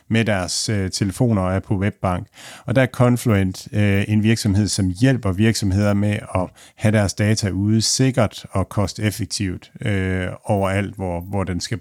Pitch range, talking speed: 95-115 Hz, 170 wpm